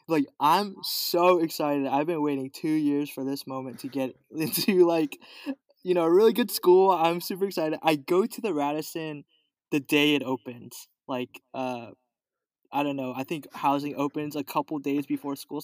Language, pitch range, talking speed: English, 145-200 Hz, 185 wpm